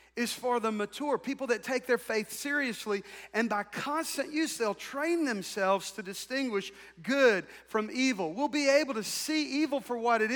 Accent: American